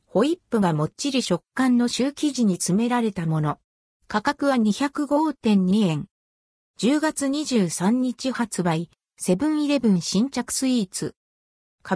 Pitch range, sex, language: 185-260 Hz, female, Japanese